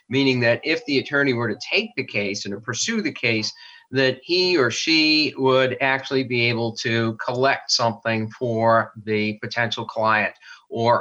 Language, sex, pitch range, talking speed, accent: English, male, 110-130 Hz, 170 wpm, American